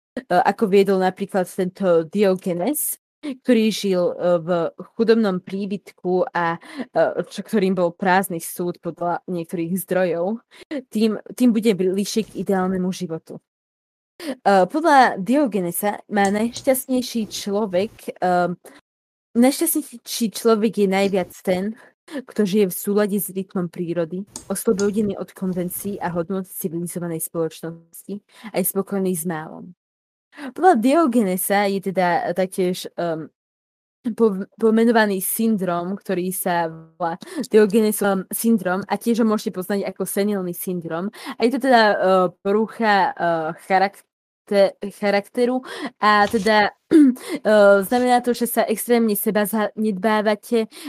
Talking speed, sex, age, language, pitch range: 110 wpm, female, 20-39, English, 185-225 Hz